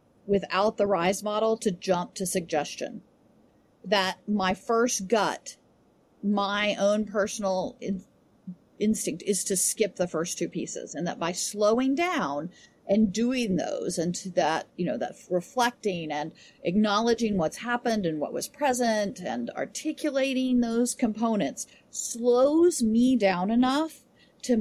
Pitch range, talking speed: 185-240 Hz, 135 wpm